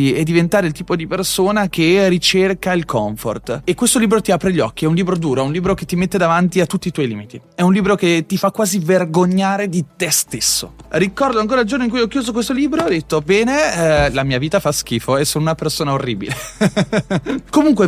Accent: native